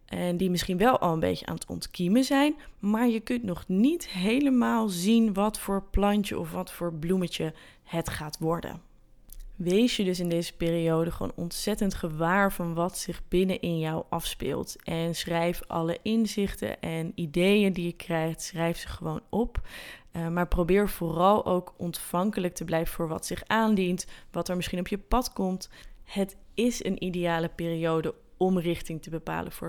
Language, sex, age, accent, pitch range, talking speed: Dutch, female, 20-39, Dutch, 165-195 Hz, 170 wpm